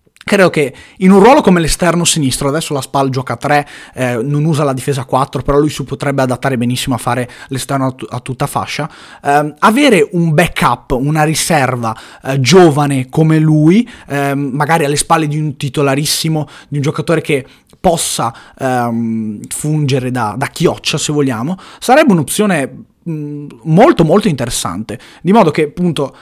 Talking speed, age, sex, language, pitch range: 160 wpm, 20-39, male, Italian, 130-155 Hz